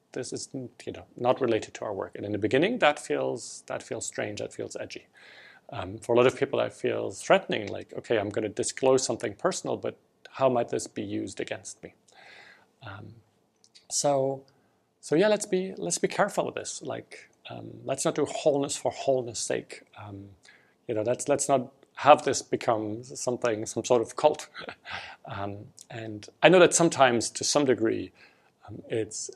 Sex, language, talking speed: male, English, 185 wpm